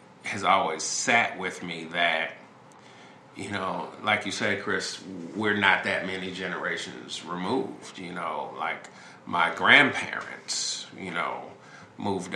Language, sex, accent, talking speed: English, male, American, 125 wpm